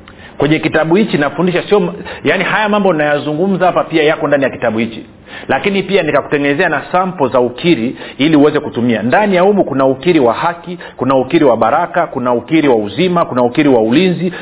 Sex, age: male, 40-59